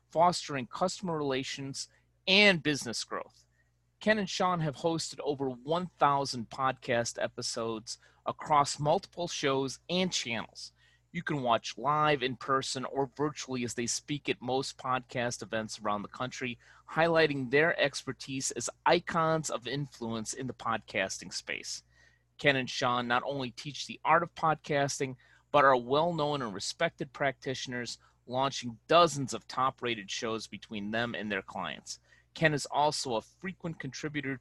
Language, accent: English, American